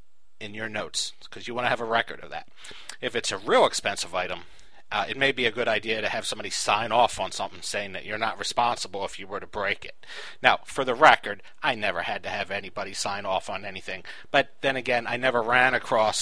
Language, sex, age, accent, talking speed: English, male, 40-59, American, 235 wpm